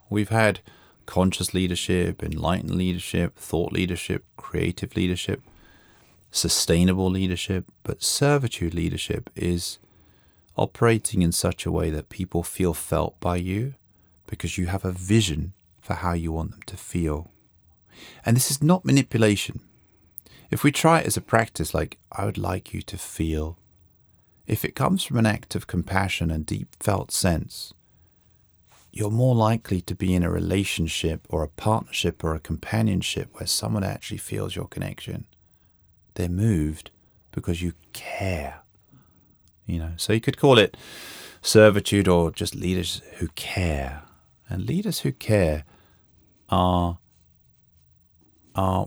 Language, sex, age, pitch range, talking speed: Swedish, male, 30-49, 85-105 Hz, 140 wpm